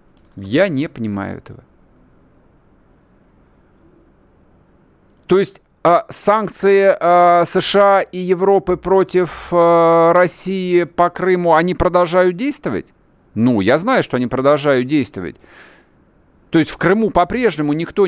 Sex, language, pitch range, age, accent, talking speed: male, Russian, 125-175 Hz, 50-69, native, 110 wpm